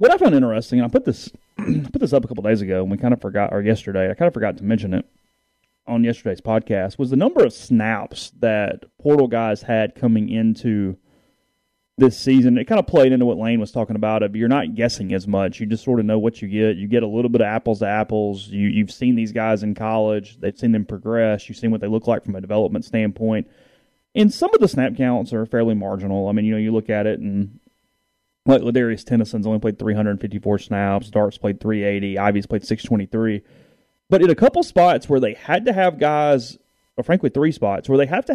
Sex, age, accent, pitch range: male, 30-49, American, 105-130 Hz